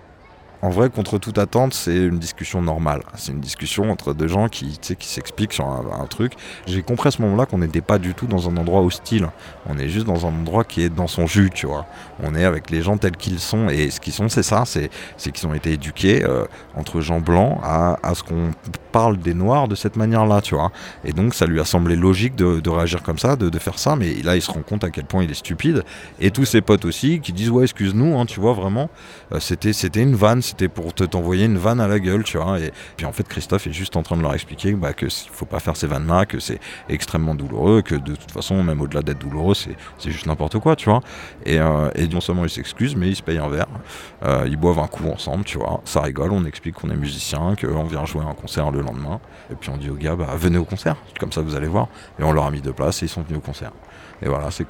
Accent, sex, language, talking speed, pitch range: French, male, French, 270 wpm, 80-100 Hz